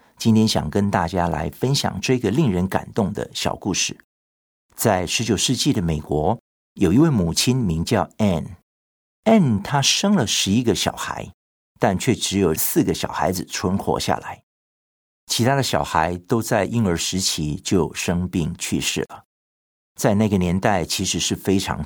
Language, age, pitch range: Chinese, 50-69, 80-110 Hz